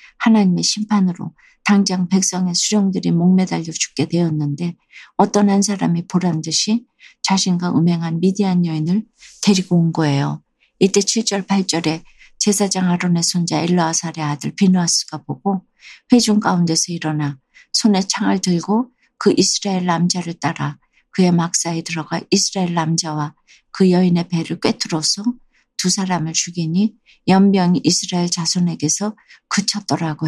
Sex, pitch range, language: female, 165-195 Hz, Korean